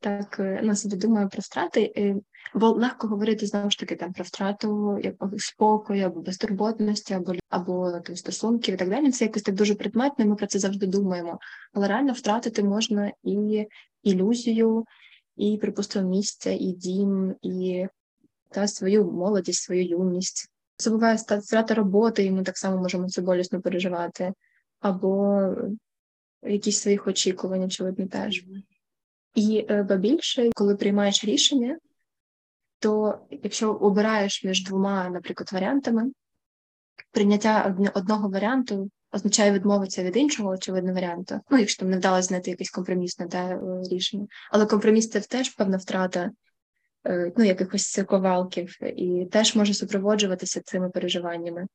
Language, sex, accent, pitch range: Ukrainian, female, native, 185-215 Hz